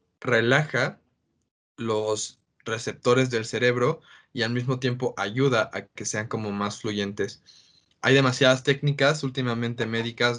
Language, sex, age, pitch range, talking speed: Spanish, male, 20-39, 110-130 Hz, 120 wpm